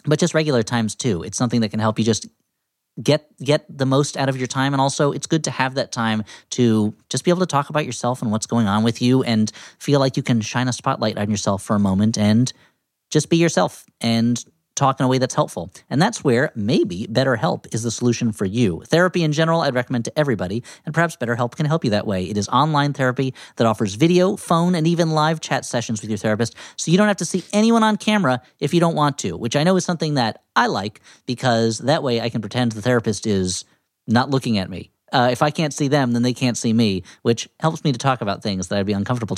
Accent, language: American, English